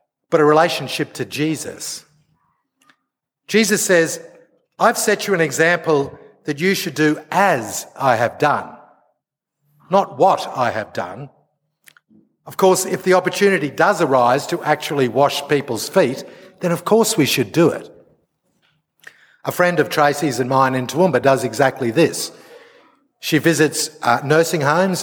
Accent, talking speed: Australian, 145 wpm